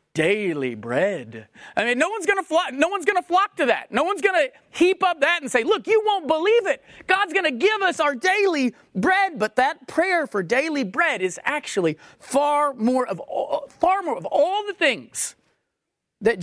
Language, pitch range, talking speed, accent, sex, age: English, 180-275 Hz, 195 wpm, American, male, 40-59